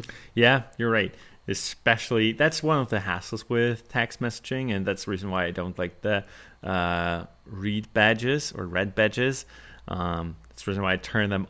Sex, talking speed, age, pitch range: male, 175 wpm, 30-49, 90-115 Hz